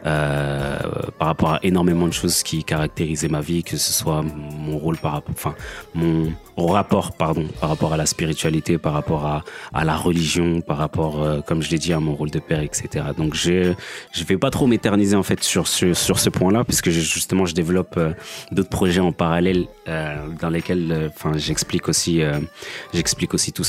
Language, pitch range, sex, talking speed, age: French, 80-90 Hz, male, 210 wpm, 30-49